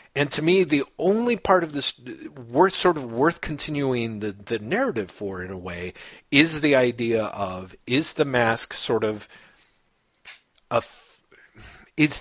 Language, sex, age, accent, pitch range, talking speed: English, male, 40-59, American, 105-135 Hz, 150 wpm